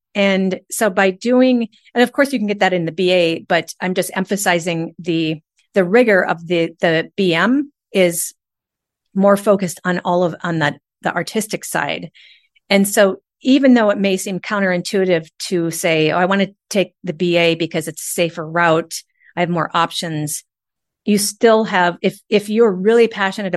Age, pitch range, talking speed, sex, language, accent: 40-59, 175-210 Hz, 180 wpm, female, English, American